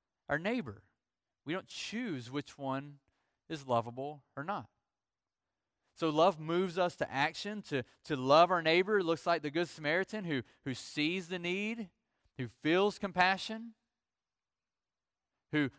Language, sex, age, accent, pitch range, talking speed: English, male, 30-49, American, 150-190 Hz, 140 wpm